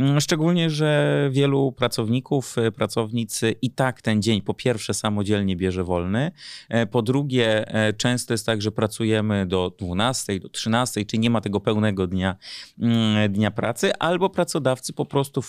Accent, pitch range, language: native, 105-125 Hz, Polish